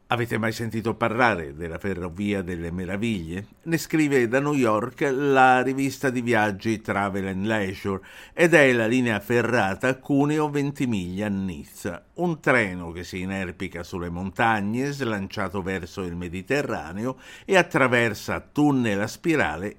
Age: 60-79